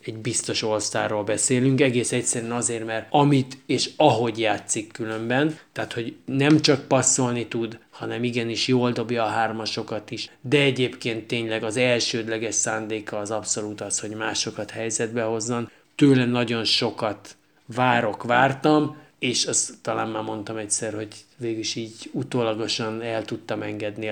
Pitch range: 110-135 Hz